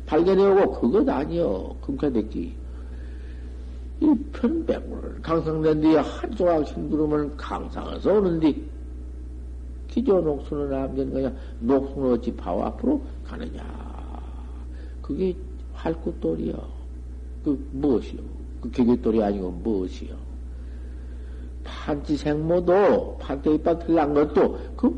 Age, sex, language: 50-69, male, Korean